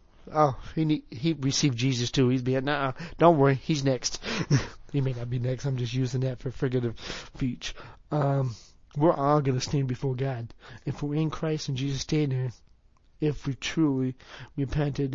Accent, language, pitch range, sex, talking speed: American, English, 130-145 Hz, male, 180 wpm